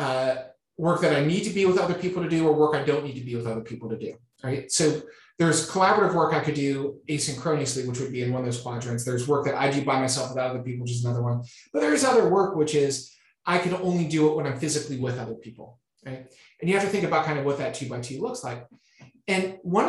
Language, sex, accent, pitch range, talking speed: English, male, American, 130-170 Hz, 275 wpm